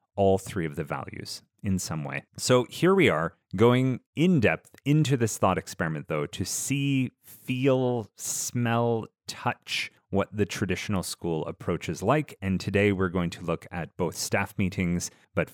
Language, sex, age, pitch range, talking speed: English, male, 30-49, 90-125 Hz, 165 wpm